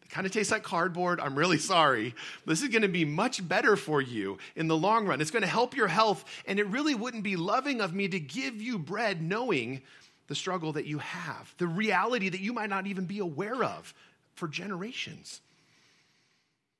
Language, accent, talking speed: English, American, 205 wpm